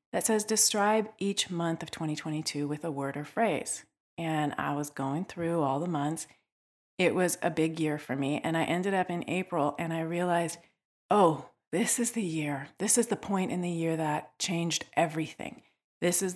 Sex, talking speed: female, 195 wpm